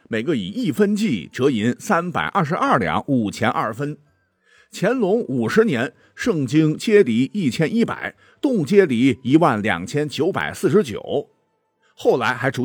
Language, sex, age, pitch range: Chinese, male, 50-69, 130-205 Hz